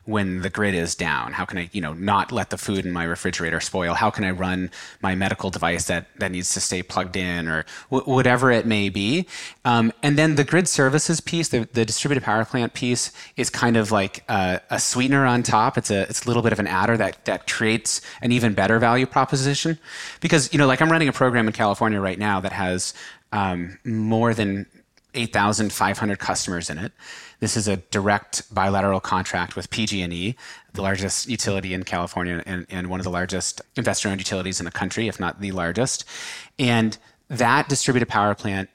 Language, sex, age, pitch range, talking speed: English, male, 30-49, 95-120 Hz, 200 wpm